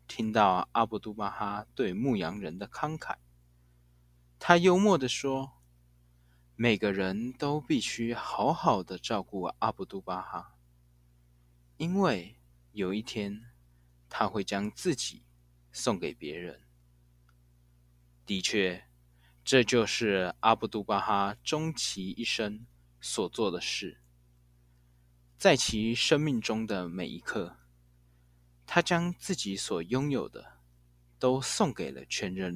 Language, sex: Chinese, male